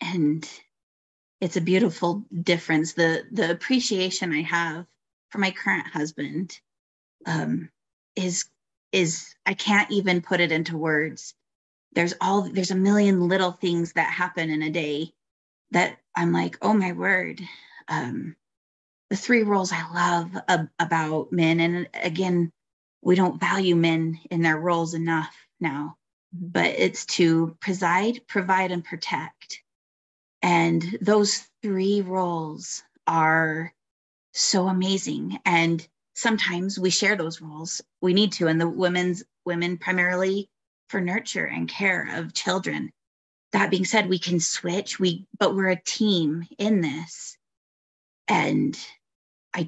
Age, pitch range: 30-49, 160-190 Hz